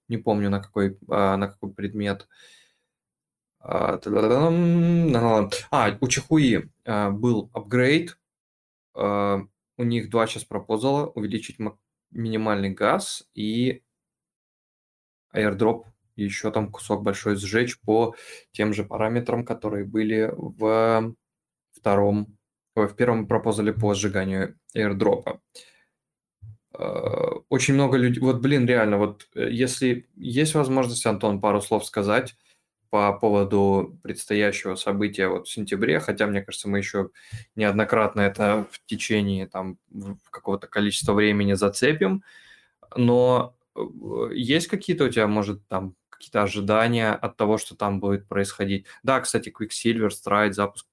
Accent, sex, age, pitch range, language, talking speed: native, male, 20-39, 100-120 Hz, Russian, 115 wpm